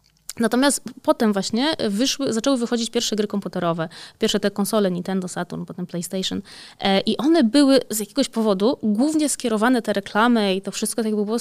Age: 20-39